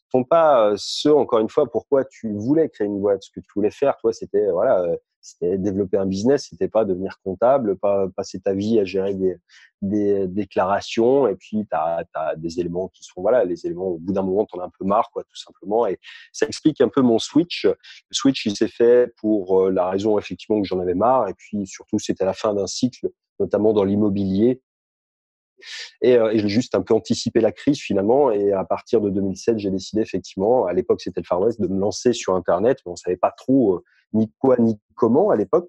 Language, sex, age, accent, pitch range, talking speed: French, male, 30-49, French, 95-130 Hz, 225 wpm